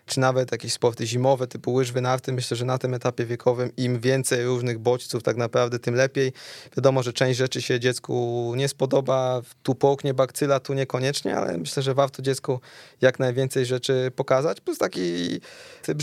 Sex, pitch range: male, 125-140 Hz